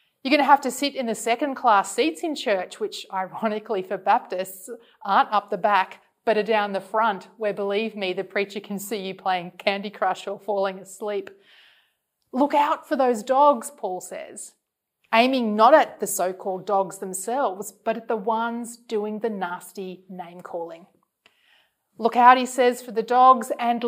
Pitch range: 195-250 Hz